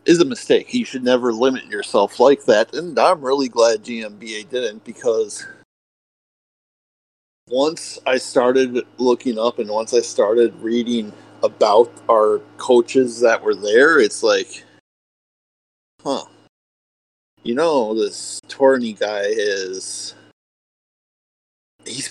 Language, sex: English, male